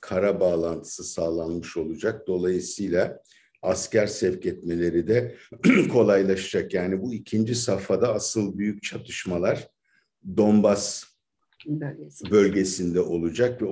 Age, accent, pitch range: 50-69, native, 90-105 Hz